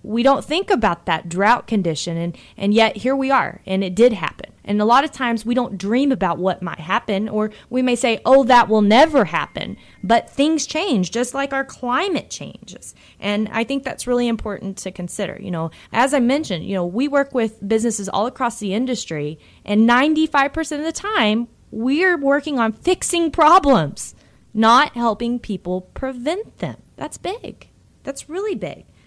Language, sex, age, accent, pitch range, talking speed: English, female, 20-39, American, 195-265 Hz, 185 wpm